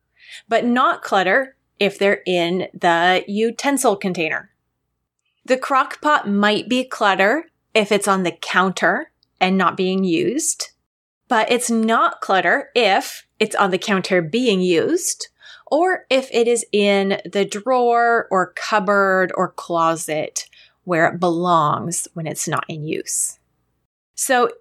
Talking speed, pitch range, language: 135 wpm, 180-235 Hz, English